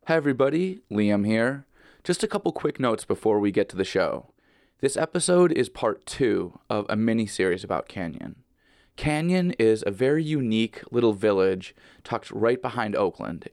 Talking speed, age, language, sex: 165 wpm, 20-39, English, male